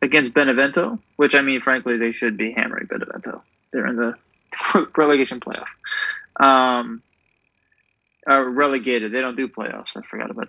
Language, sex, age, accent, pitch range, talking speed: English, male, 20-39, American, 120-155 Hz, 150 wpm